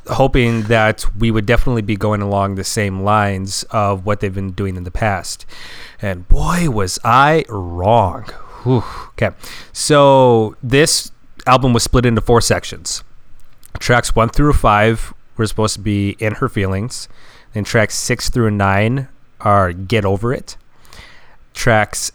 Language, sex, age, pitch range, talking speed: English, male, 30-49, 100-125 Hz, 150 wpm